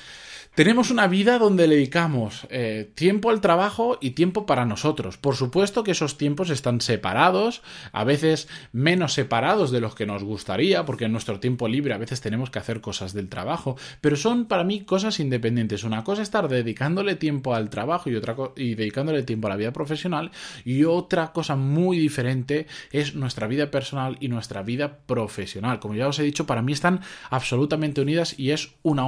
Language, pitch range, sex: Spanish, 120-170 Hz, male